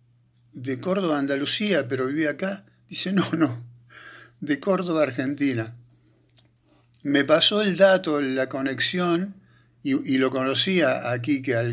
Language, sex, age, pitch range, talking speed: Spanish, male, 60-79, 110-140 Hz, 130 wpm